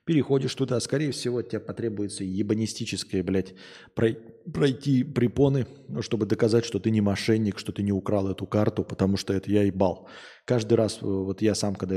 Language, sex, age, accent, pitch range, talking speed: Russian, male, 20-39, native, 100-125 Hz, 165 wpm